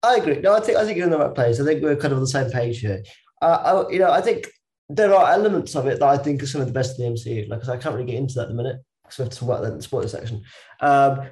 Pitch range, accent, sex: 125-155 Hz, British, male